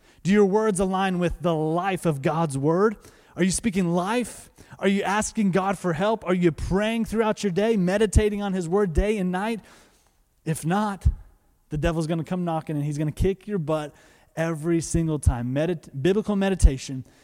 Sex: male